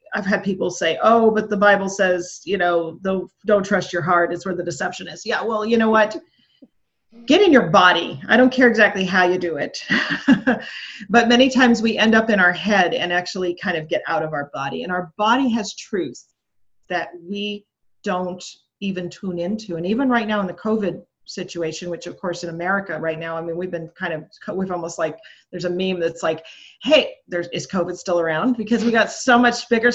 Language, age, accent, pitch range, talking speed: English, 40-59, American, 175-225 Hz, 215 wpm